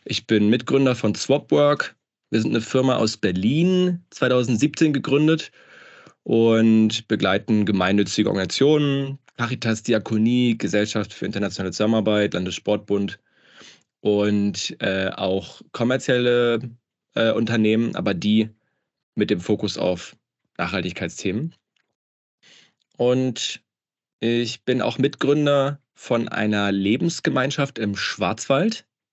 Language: German